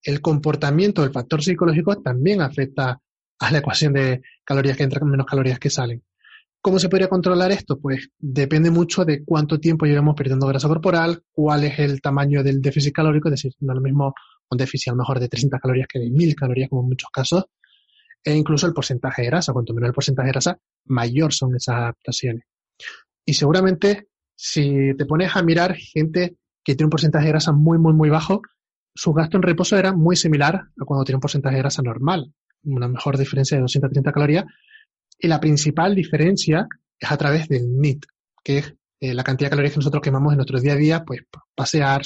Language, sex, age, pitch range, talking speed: Spanish, male, 20-39, 135-165 Hz, 205 wpm